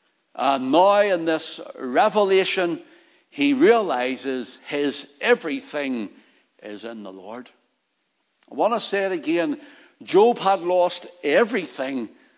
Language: English